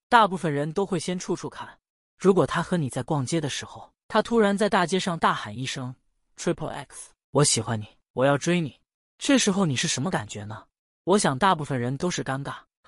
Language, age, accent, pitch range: Chinese, 20-39, native, 130-190 Hz